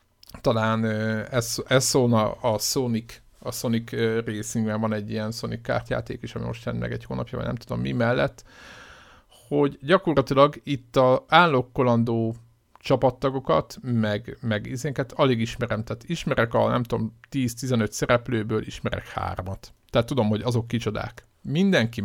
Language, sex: Hungarian, male